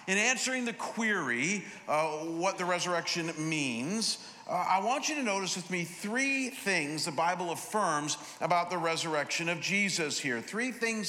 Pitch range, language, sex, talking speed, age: 165-215 Hz, English, male, 160 wpm, 50-69